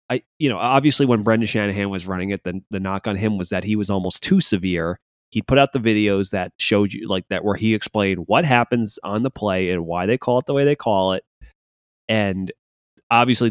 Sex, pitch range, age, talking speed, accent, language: male, 95-120 Hz, 30-49, 230 wpm, American, English